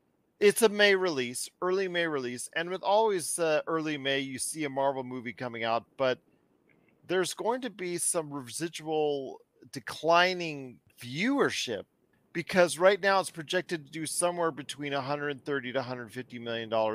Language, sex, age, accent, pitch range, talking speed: English, male, 40-59, American, 130-185 Hz, 145 wpm